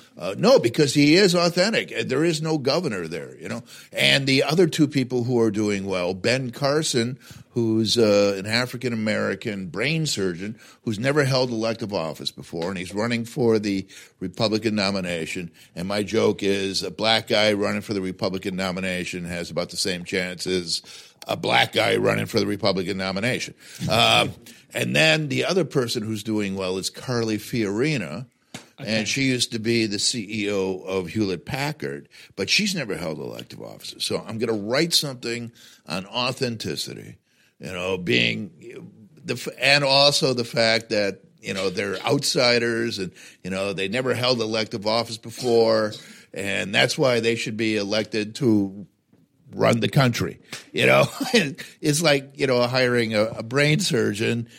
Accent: American